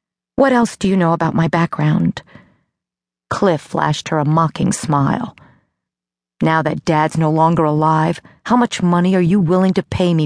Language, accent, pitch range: English, American, 155-185 Hz